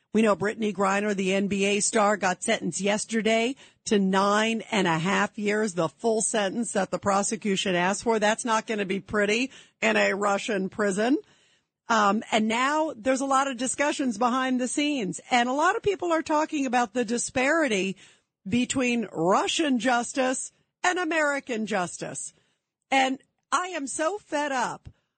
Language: English